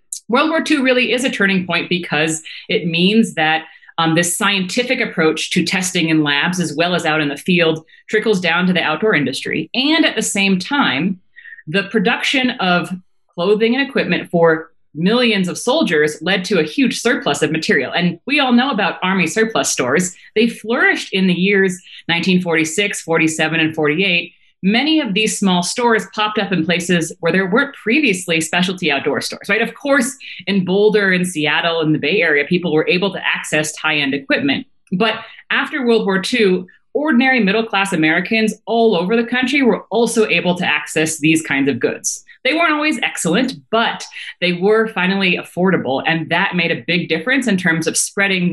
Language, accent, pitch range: English, American, 165-225 Hz